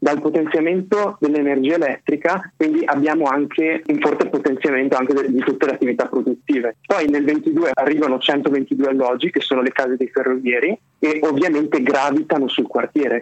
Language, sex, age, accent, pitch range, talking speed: Italian, male, 30-49, native, 130-150 Hz, 150 wpm